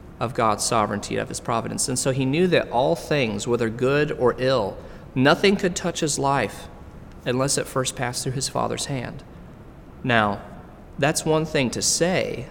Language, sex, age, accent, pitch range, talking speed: English, male, 30-49, American, 115-145 Hz, 175 wpm